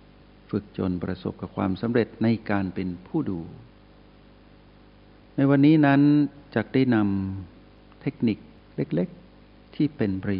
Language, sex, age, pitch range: Thai, male, 60-79, 95-125 Hz